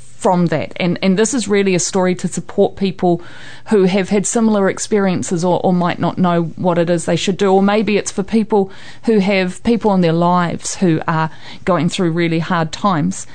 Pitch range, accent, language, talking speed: 175-210 Hz, Australian, English, 205 wpm